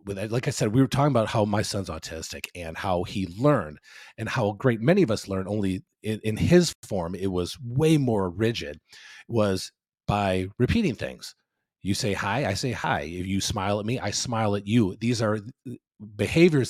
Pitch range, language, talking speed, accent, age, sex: 95-130 Hz, English, 195 wpm, American, 30-49, male